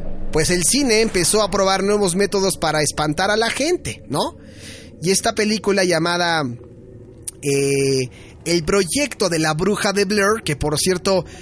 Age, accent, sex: 30-49, Mexican, male